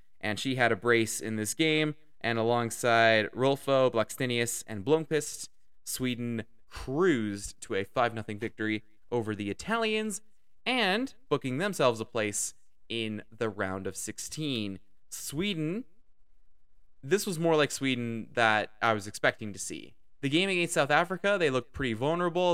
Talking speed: 145 wpm